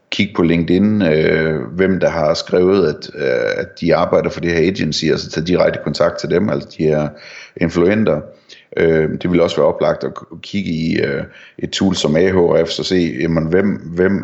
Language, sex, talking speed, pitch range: Danish, male, 200 wpm, 80-90 Hz